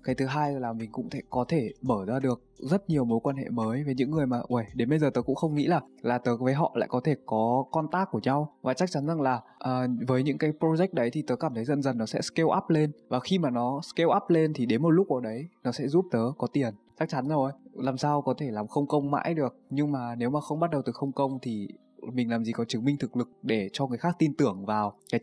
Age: 20-39